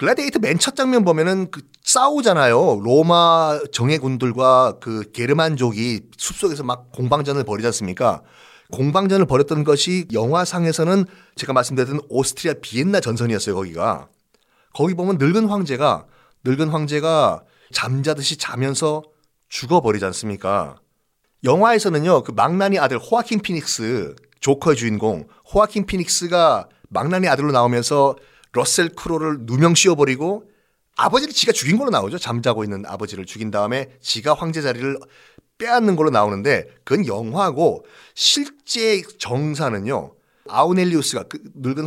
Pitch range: 125-180 Hz